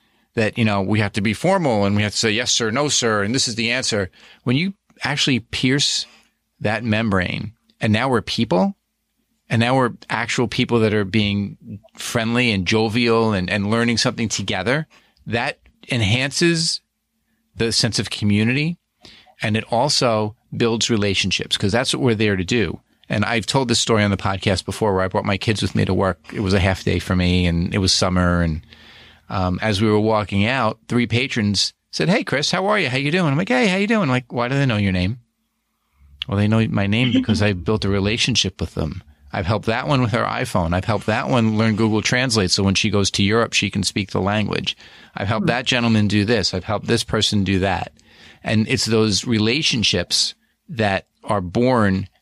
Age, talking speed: 40-59, 210 wpm